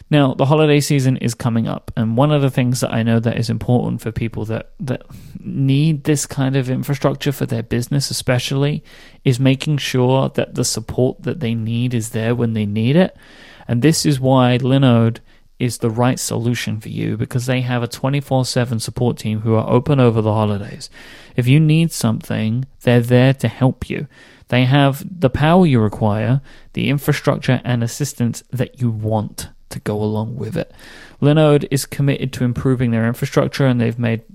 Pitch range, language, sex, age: 115-135 Hz, English, male, 30-49